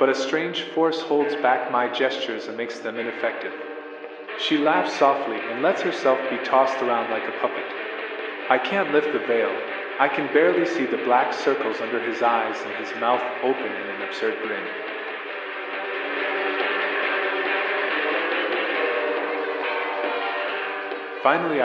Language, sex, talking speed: Italian, male, 135 wpm